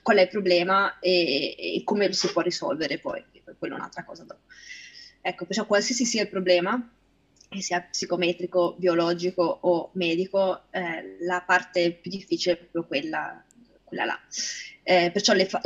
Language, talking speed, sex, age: Italian, 165 wpm, female, 20-39